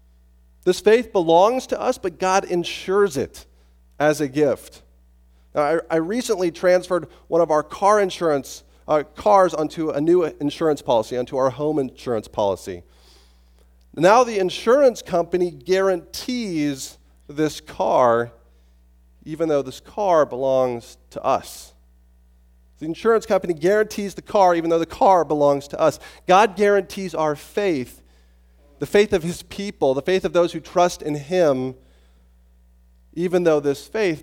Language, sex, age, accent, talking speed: English, male, 40-59, American, 140 wpm